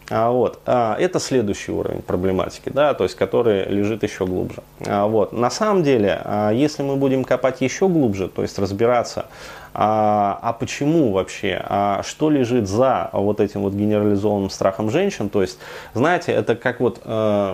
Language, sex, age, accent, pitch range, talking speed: Russian, male, 20-39, native, 100-130 Hz, 150 wpm